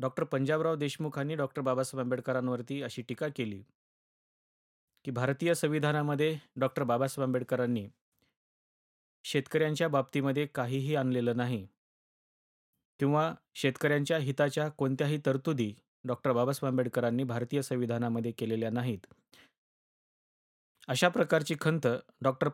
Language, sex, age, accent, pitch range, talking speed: Marathi, male, 30-49, native, 130-160 Hz, 95 wpm